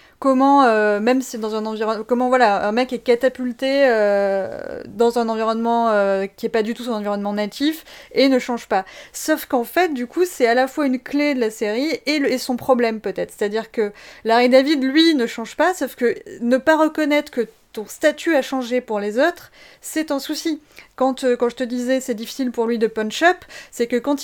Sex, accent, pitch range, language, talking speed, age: female, French, 215-275 Hz, French, 225 wpm, 30-49